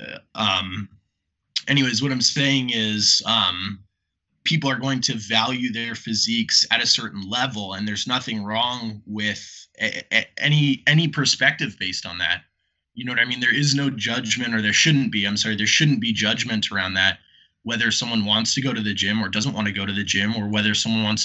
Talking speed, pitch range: 200 wpm, 105-125 Hz